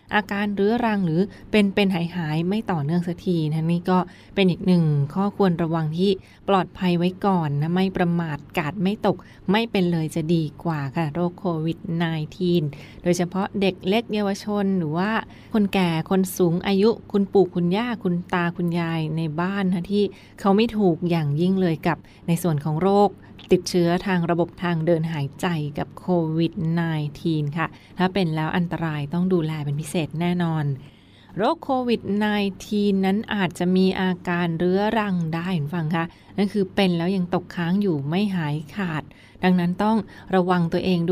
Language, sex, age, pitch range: Thai, female, 20-39, 165-195 Hz